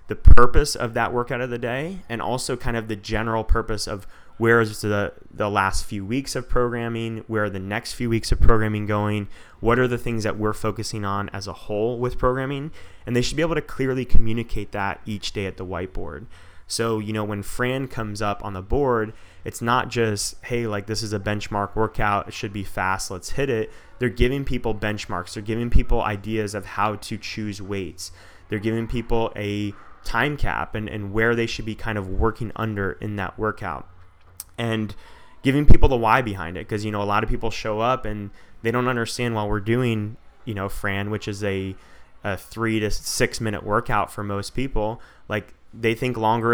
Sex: male